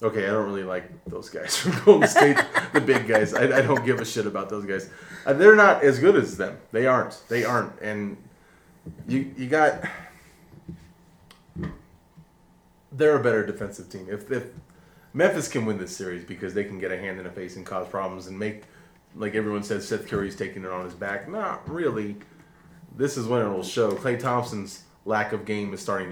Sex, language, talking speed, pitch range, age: male, English, 200 wpm, 95-135 Hz, 20-39